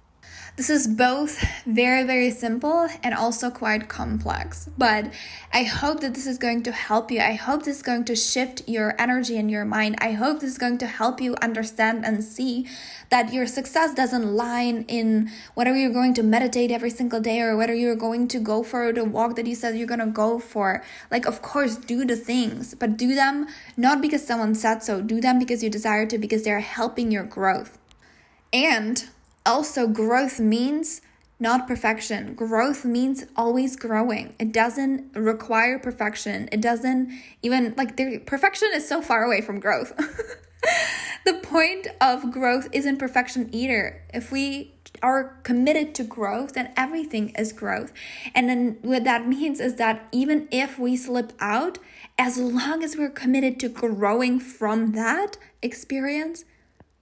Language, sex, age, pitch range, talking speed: English, female, 10-29, 225-260 Hz, 175 wpm